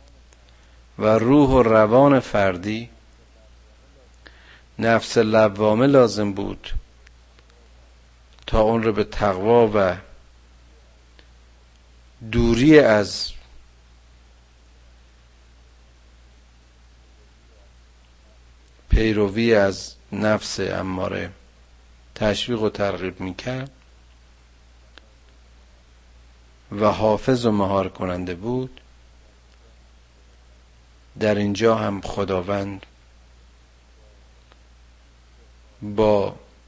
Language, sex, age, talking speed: Persian, male, 50-69, 60 wpm